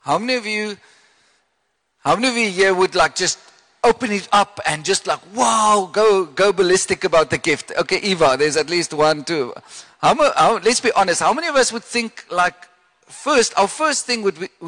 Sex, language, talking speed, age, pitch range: male, English, 210 wpm, 50-69, 155-210 Hz